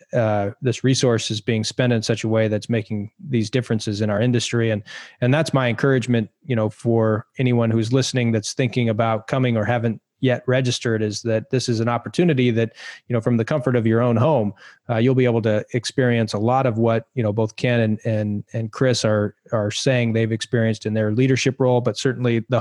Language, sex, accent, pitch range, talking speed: English, male, American, 110-125 Hz, 220 wpm